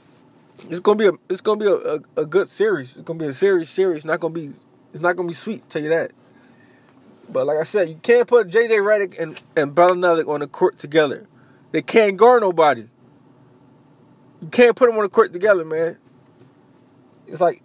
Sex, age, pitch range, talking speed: male, 20-39, 160-225 Hz, 205 wpm